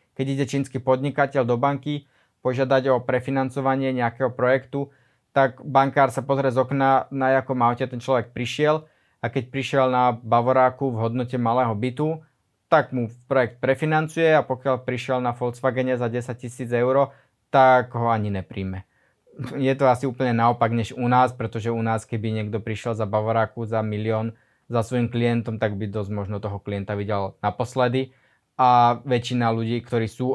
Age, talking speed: 20-39, 165 wpm